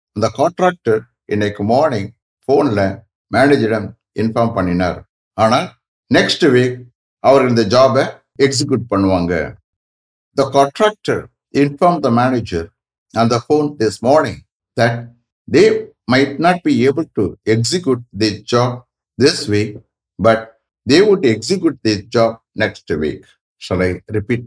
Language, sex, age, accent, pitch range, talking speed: English, male, 60-79, Indian, 105-145 Hz, 125 wpm